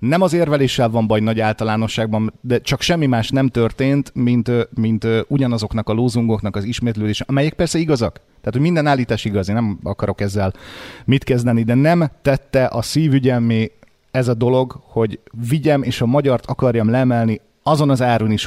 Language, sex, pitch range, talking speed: Hungarian, male, 110-135 Hz, 170 wpm